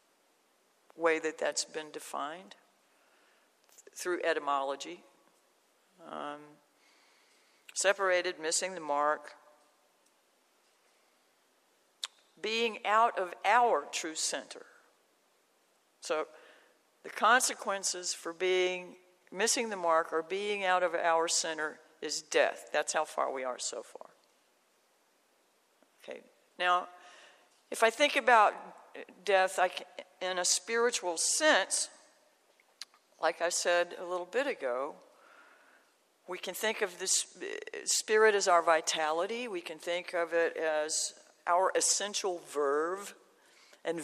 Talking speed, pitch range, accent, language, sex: 110 wpm, 165-225 Hz, American, English, female